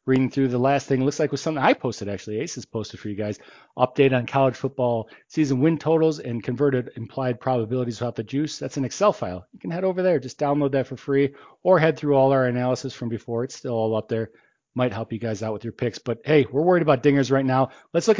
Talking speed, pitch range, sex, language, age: 255 wpm, 120-145 Hz, male, English, 40-59